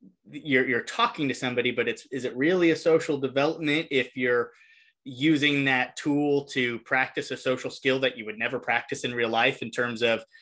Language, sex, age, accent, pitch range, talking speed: English, male, 20-39, American, 120-135 Hz, 195 wpm